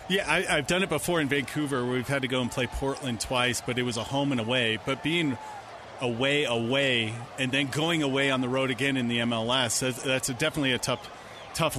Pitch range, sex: 130-155 Hz, male